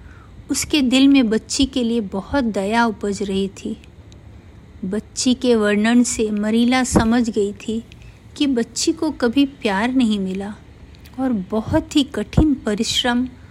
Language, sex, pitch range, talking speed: Hindi, female, 190-255 Hz, 140 wpm